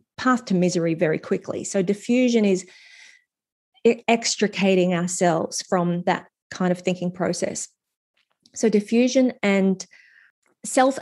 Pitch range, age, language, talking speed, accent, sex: 175-230 Hz, 30-49, English, 110 wpm, Australian, female